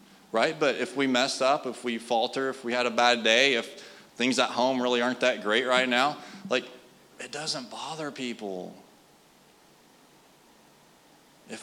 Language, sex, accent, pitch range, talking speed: English, male, American, 120-150 Hz, 160 wpm